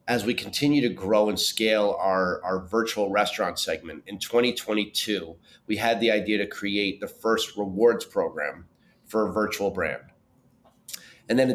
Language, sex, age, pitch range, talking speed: English, male, 30-49, 105-120 Hz, 160 wpm